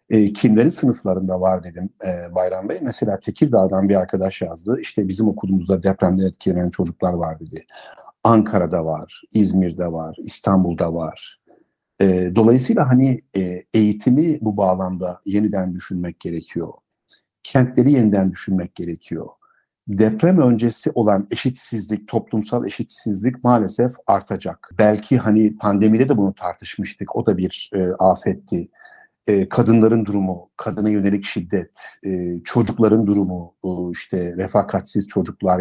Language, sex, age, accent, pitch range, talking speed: Turkish, male, 60-79, native, 95-120 Hz, 110 wpm